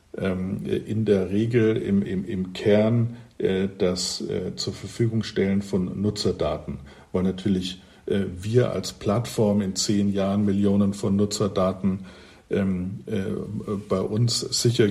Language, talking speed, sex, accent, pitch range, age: German, 110 wpm, male, German, 95-115 Hz, 50-69